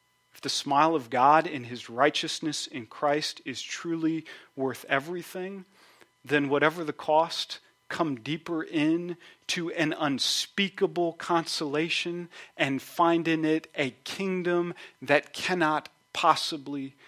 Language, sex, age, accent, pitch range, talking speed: English, male, 40-59, American, 140-165 Hz, 115 wpm